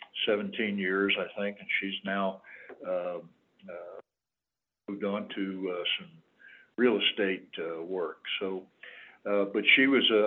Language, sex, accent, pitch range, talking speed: English, male, American, 95-120 Hz, 140 wpm